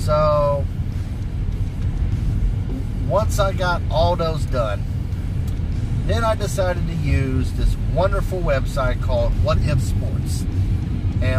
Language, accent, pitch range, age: English, American, 95-105 Hz, 40-59